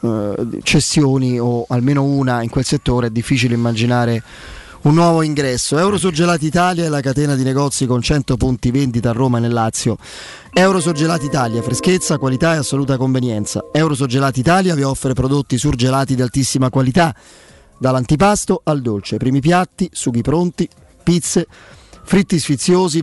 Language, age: Italian, 30-49